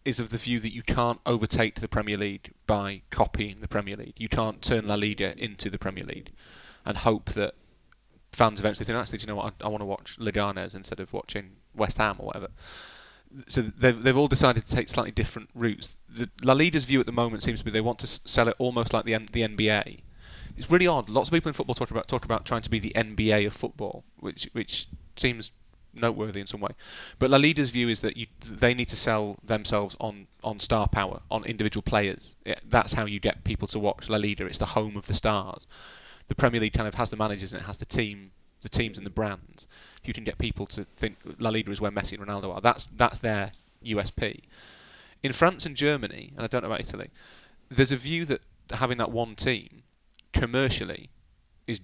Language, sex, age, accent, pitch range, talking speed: English, male, 30-49, British, 105-120 Hz, 230 wpm